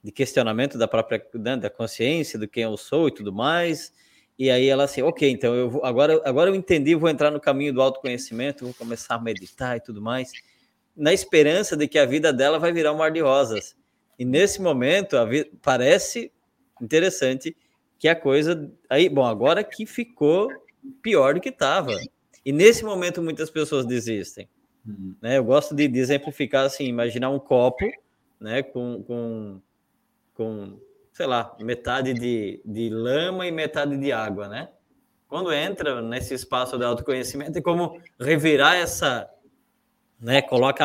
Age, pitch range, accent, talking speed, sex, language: 20-39, 120-165 Hz, Brazilian, 165 wpm, male, Portuguese